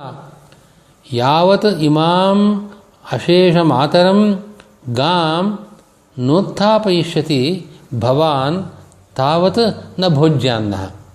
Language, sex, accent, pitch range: Kannada, male, native, 130-175 Hz